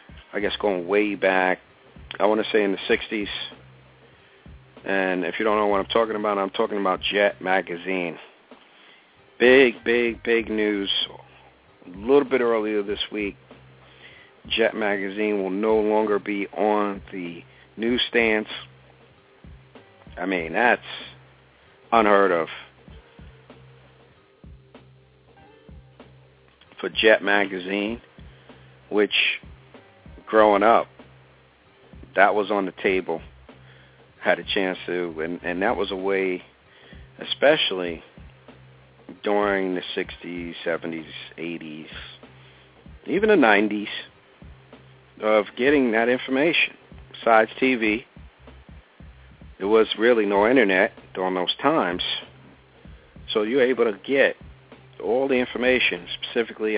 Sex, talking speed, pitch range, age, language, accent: male, 110 wpm, 65-105 Hz, 50-69, English, American